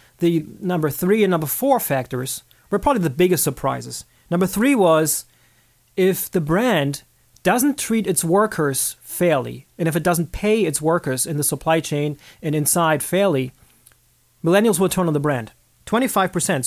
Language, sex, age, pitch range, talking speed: English, male, 30-49, 145-185 Hz, 160 wpm